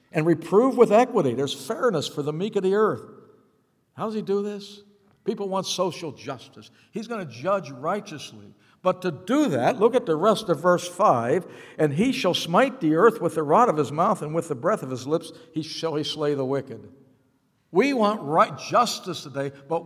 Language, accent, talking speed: English, American, 205 wpm